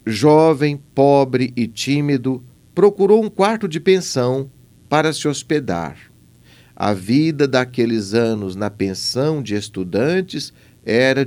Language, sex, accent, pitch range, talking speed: Portuguese, male, Brazilian, 105-155 Hz, 110 wpm